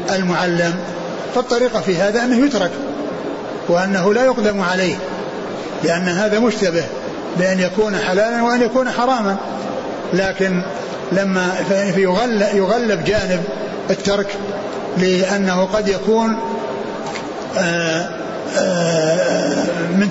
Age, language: 60-79, Arabic